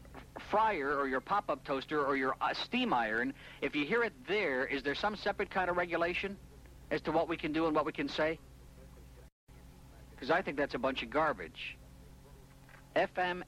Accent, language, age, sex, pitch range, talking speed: American, English, 60-79, male, 110-160 Hz, 185 wpm